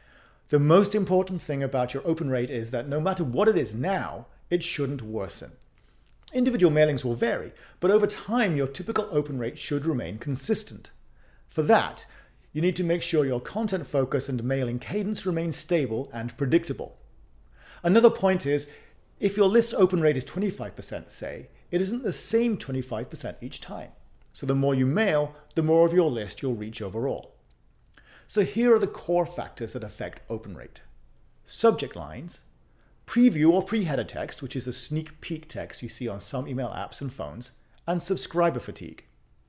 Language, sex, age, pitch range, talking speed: English, male, 40-59, 125-185 Hz, 175 wpm